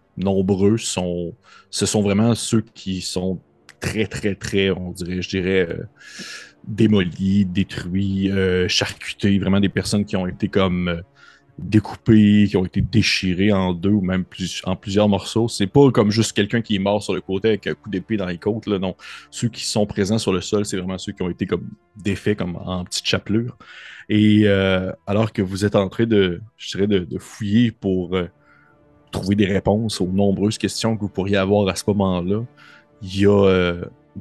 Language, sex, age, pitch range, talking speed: French, male, 30-49, 90-105 Hz, 200 wpm